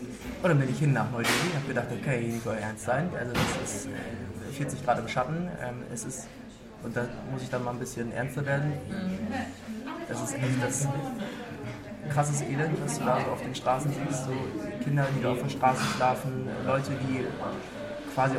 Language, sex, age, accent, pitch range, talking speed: German, male, 20-39, German, 125-140 Hz, 195 wpm